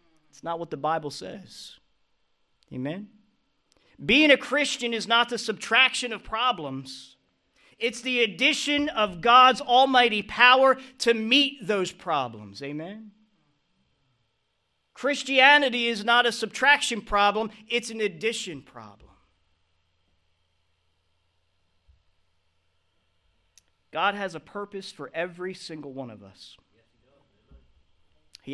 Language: English